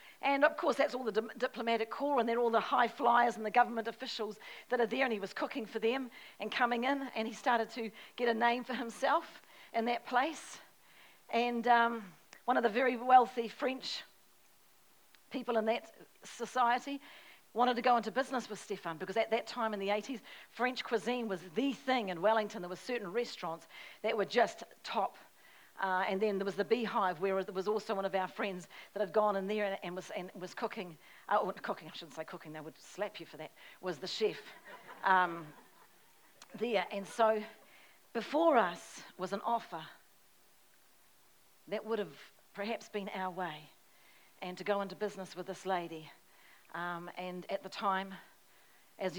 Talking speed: 190 wpm